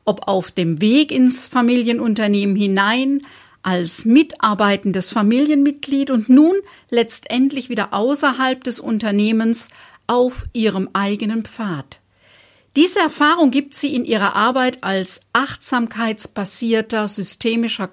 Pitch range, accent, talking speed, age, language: 205-270 Hz, German, 105 wpm, 50-69, German